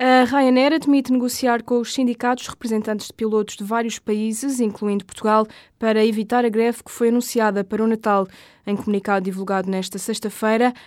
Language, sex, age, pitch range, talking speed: Portuguese, female, 20-39, 205-235 Hz, 165 wpm